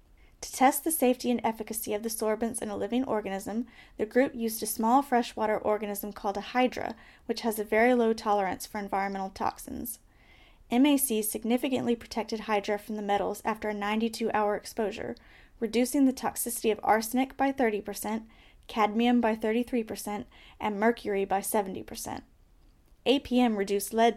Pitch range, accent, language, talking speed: 210-240 Hz, American, English, 150 wpm